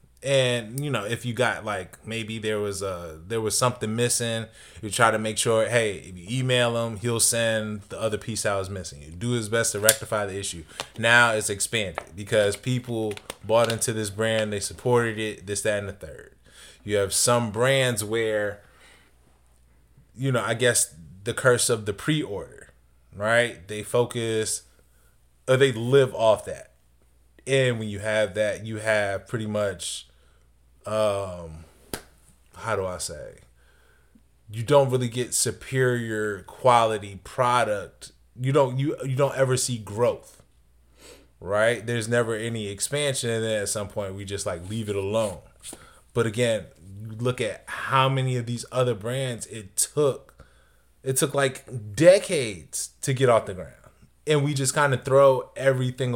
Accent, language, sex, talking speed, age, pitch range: American, English, male, 165 wpm, 20-39, 100-120 Hz